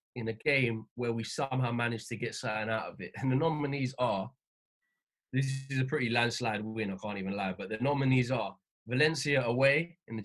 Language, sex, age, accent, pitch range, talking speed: English, male, 20-39, British, 110-140 Hz, 205 wpm